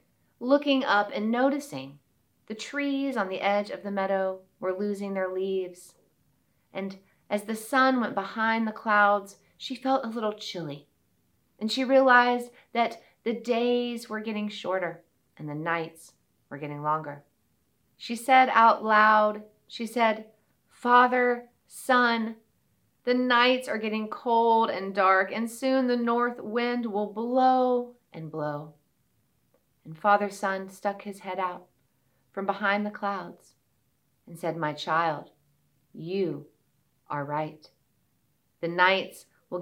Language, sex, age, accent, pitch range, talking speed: English, female, 30-49, American, 175-240 Hz, 135 wpm